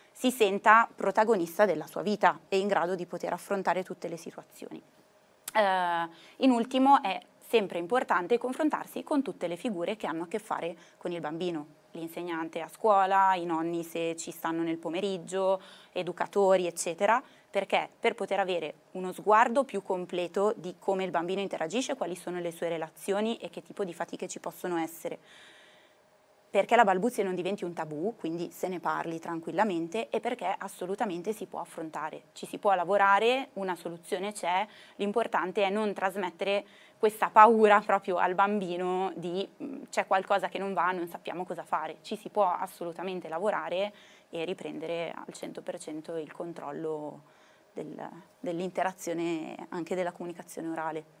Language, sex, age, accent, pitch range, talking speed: Italian, female, 20-39, native, 170-205 Hz, 155 wpm